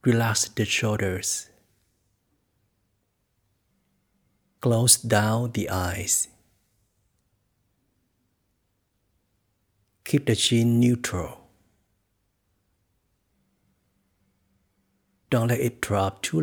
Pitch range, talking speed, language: 95-110 Hz, 60 wpm, Vietnamese